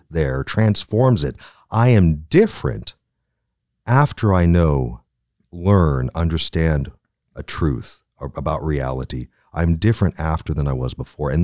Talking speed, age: 120 wpm, 40-59